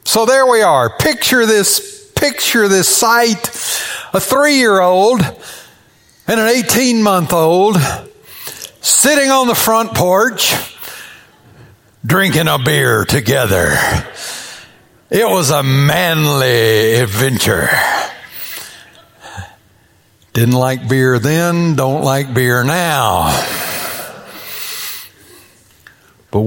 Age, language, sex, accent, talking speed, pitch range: 60-79, English, male, American, 85 wpm, 140-235 Hz